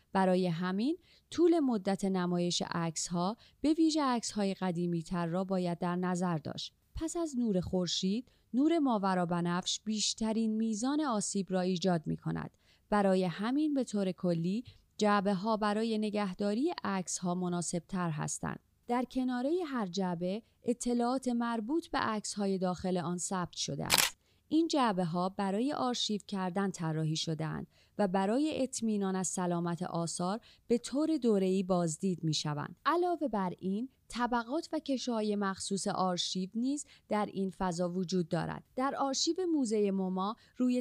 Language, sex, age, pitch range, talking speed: Persian, female, 30-49, 180-240 Hz, 135 wpm